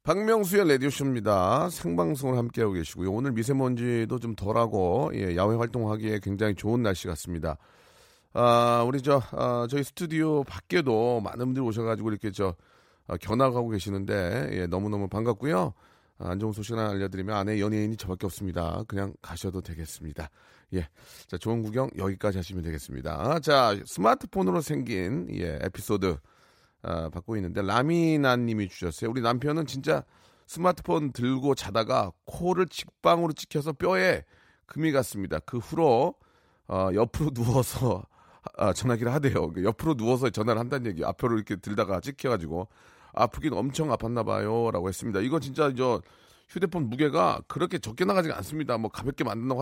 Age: 30-49